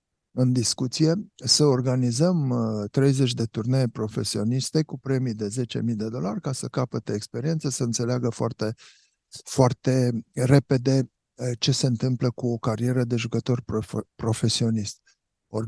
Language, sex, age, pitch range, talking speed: Romanian, male, 50-69, 110-130 Hz, 130 wpm